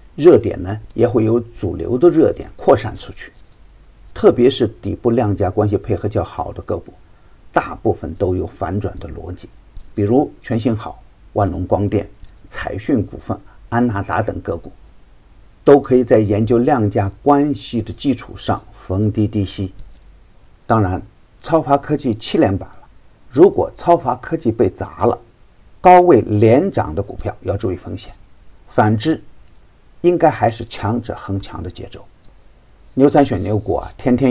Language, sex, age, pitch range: Chinese, male, 50-69, 100-120 Hz